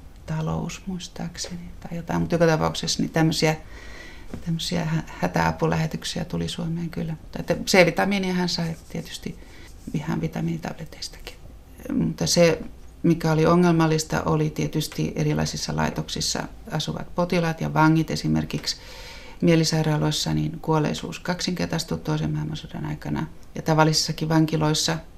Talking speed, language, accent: 100 wpm, Finnish, native